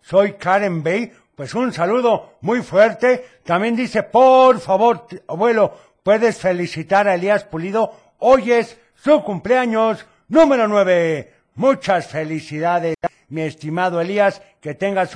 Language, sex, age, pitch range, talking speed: Spanish, male, 60-79, 160-220 Hz, 125 wpm